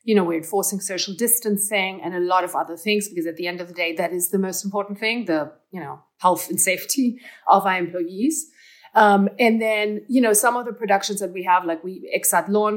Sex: female